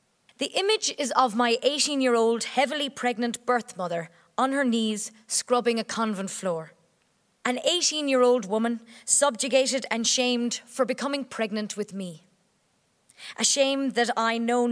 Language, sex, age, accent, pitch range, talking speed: English, female, 20-39, Irish, 215-270 Hz, 135 wpm